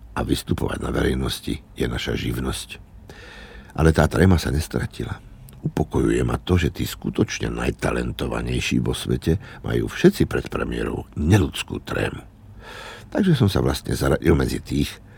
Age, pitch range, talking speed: 60-79, 70-100 Hz, 135 wpm